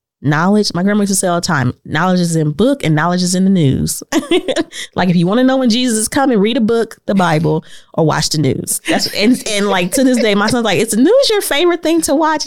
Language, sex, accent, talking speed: English, female, American, 265 wpm